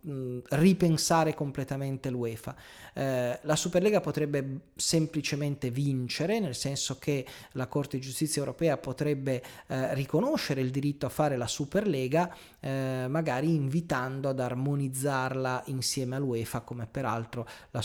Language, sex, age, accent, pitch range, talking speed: Italian, male, 30-49, native, 130-160 Hz, 120 wpm